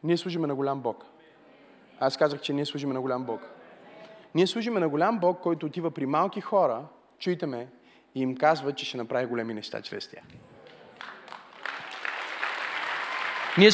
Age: 30-49